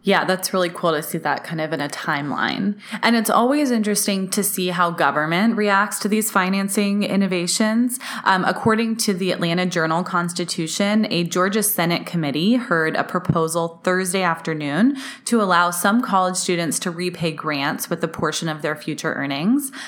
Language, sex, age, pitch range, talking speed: English, female, 20-39, 160-205 Hz, 165 wpm